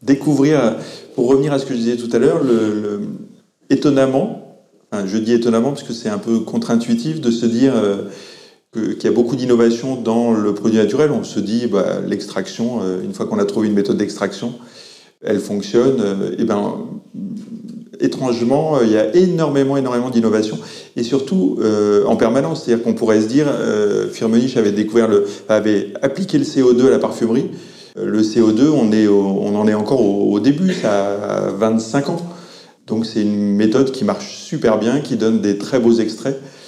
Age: 30-49